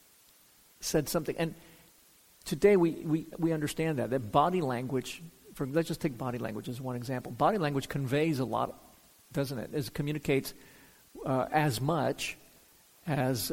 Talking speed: 150 wpm